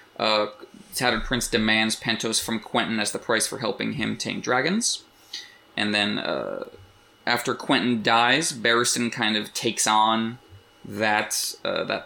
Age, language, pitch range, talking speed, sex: 20-39, English, 110-125 Hz, 145 wpm, male